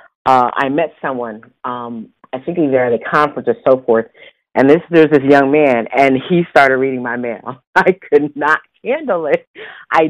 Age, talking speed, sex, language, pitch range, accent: 40-59, 195 wpm, female, English, 125-160 Hz, American